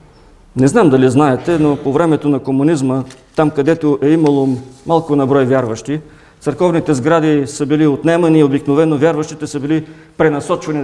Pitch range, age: 130-155 Hz, 50-69